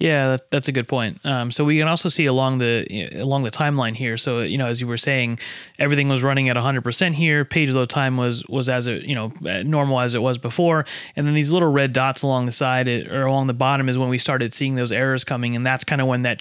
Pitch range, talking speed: 120-140 Hz, 270 wpm